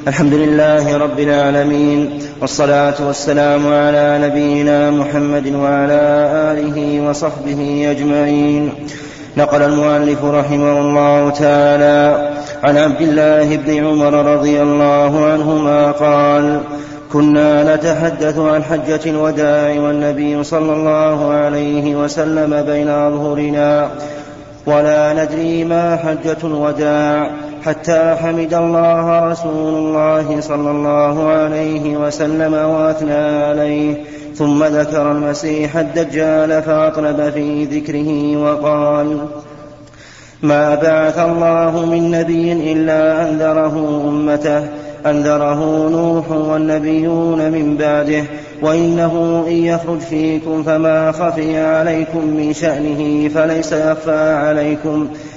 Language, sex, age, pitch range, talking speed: Arabic, male, 30-49, 145-155 Hz, 95 wpm